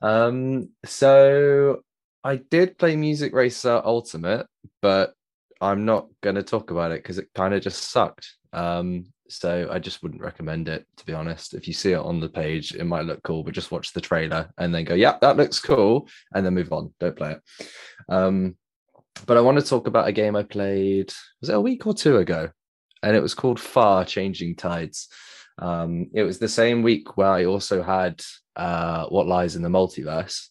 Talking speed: 200 wpm